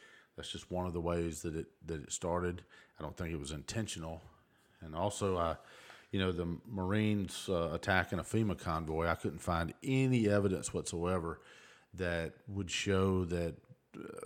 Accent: American